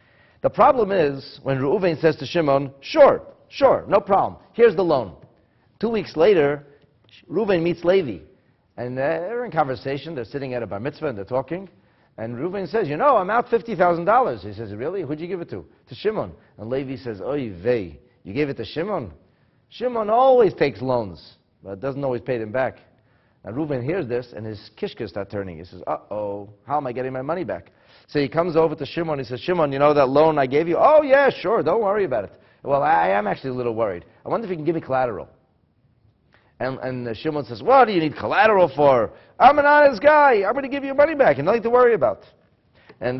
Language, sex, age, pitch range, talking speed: English, male, 40-59, 125-170 Hz, 220 wpm